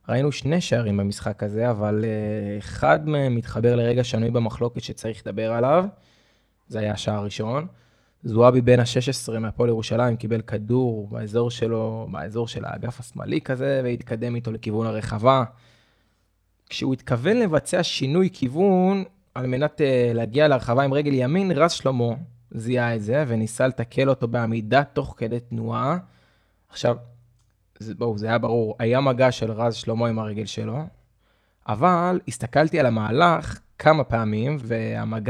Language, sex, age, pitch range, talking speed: Hebrew, male, 20-39, 115-140 Hz, 140 wpm